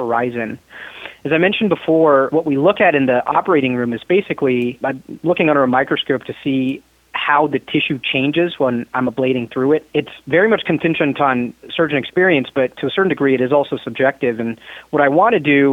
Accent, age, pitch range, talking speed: American, 30-49, 130-155 Hz, 200 wpm